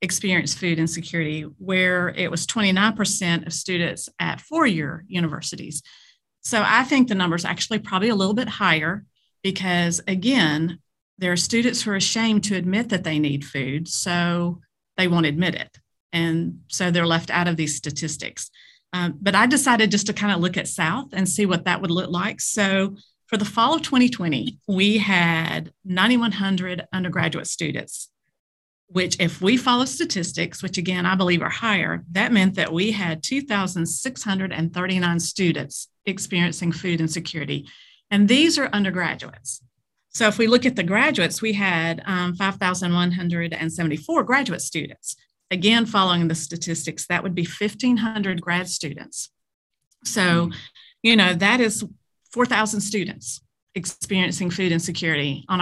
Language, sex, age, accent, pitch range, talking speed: English, female, 40-59, American, 165-205 Hz, 150 wpm